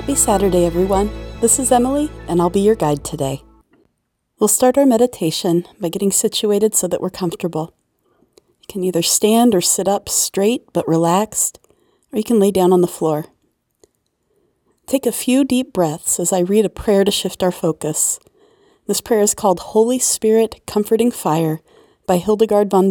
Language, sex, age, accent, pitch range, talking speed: English, female, 40-59, American, 175-225 Hz, 175 wpm